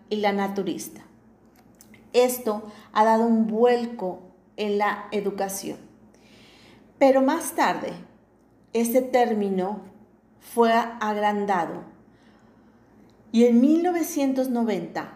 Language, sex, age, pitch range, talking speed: Spanish, female, 40-59, 200-235 Hz, 85 wpm